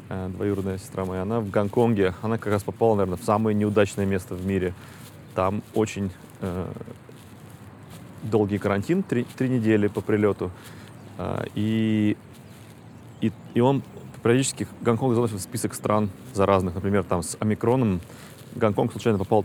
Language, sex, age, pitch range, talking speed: Russian, male, 30-49, 100-120 Hz, 140 wpm